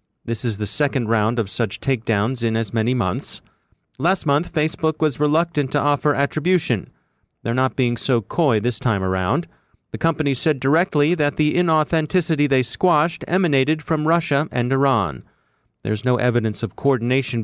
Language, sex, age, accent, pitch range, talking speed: English, male, 30-49, American, 120-155 Hz, 160 wpm